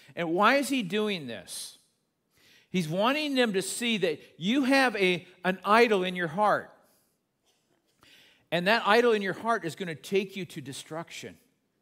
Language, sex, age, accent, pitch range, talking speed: English, male, 50-69, American, 165-215 Hz, 170 wpm